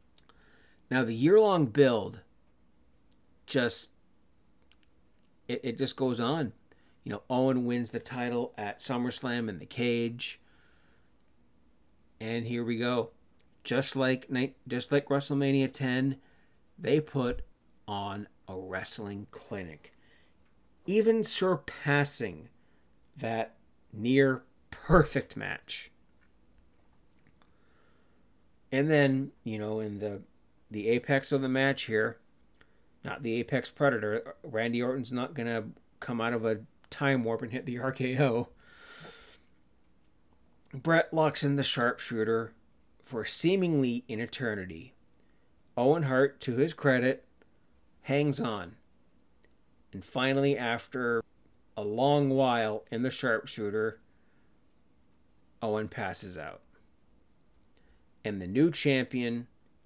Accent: American